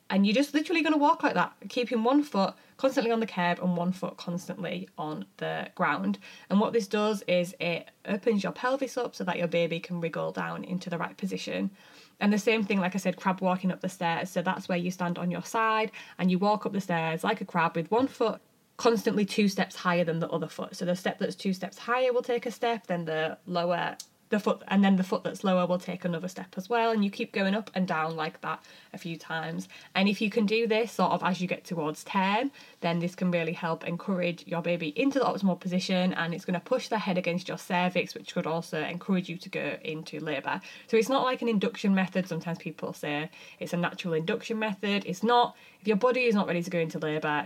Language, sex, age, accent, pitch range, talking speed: English, female, 20-39, British, 170-220 Hz, 245 wpm